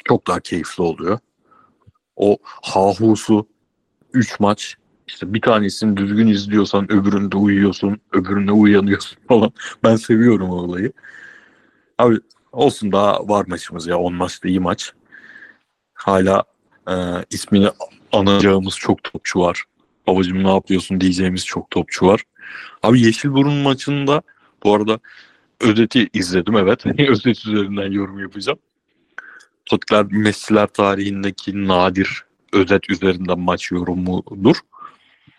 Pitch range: 95-105 Hz